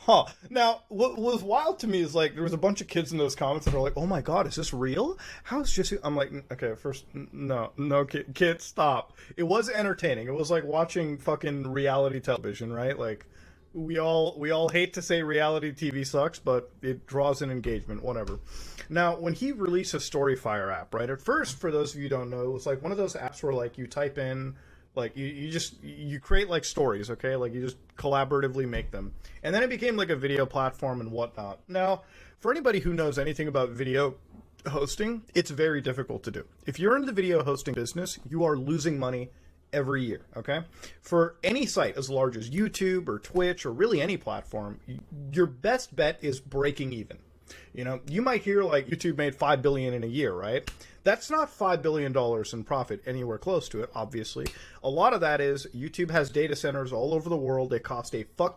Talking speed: 215 wpm